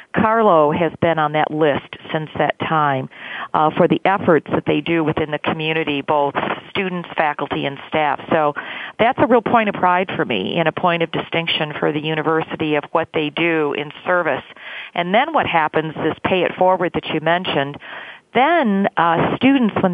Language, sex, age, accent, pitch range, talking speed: English, female, 40-59, American, 160-195 Hz, 185 wpm